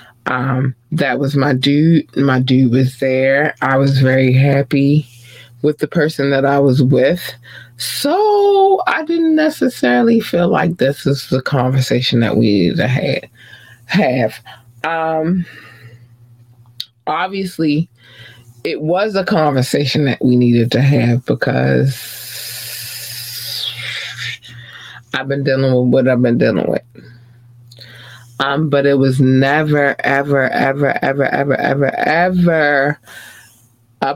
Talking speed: 120 wpm